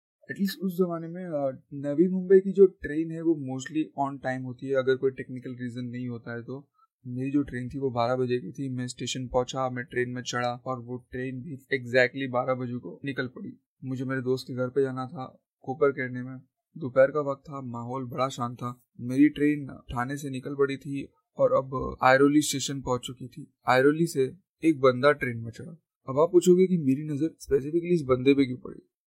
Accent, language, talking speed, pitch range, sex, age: native, Hindi, 210 wpm, 130-165 Hz, male, 20-39